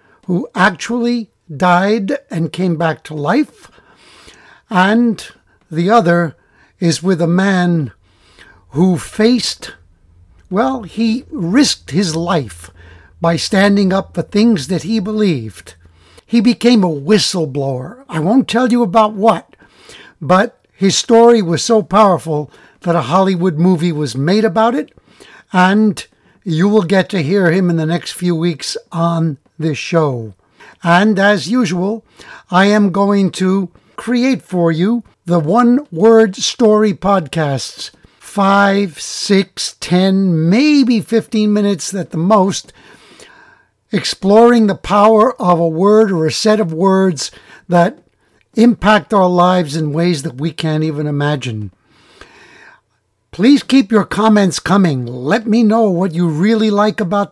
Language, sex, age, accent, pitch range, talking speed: English, male, 60-79, American, 165-215 Hz, 135 wpm